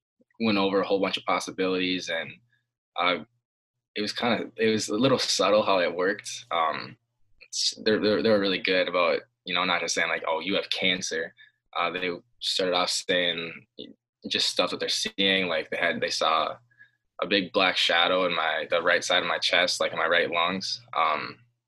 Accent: American